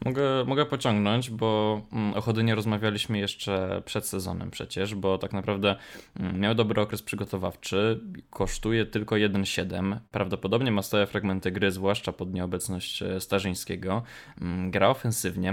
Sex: male